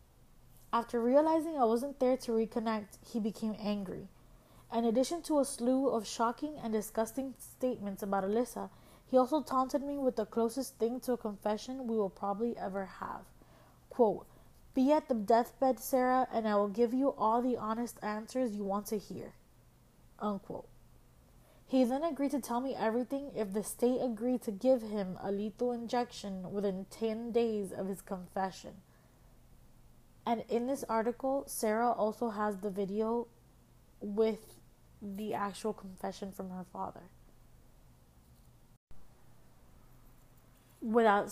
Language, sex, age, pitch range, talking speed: English, female, 20-39, 205-250 Hz, 140 wpm